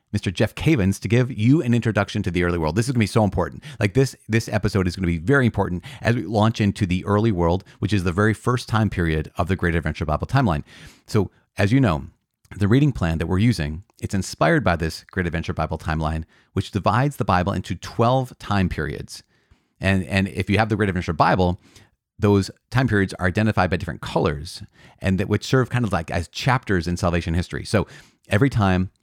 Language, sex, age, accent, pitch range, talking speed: English, male, 30-49, American, 90-115 Hz, 220 wpm